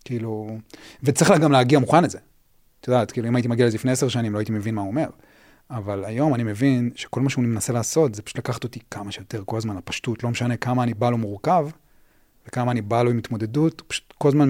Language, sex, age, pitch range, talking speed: Hebrew, male, 30-49, 100-125 Hz, 240 wpm